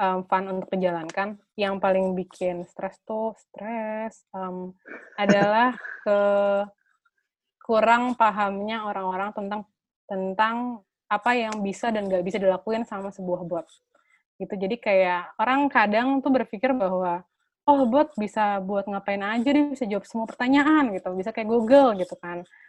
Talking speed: 140 wpm